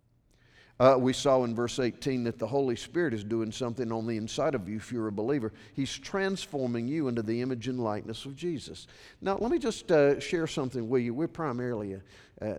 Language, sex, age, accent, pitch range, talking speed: English, male, 50-69, American, 110-145 Hz, 215 wpm